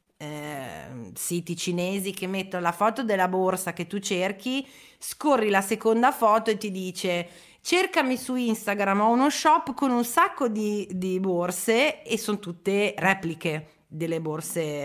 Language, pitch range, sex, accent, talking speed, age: Italian, 175-235 Hz, female, native, 145 wpm, 30-49